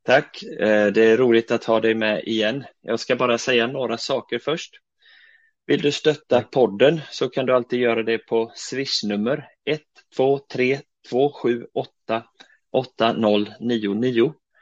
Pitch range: 105-135 Hz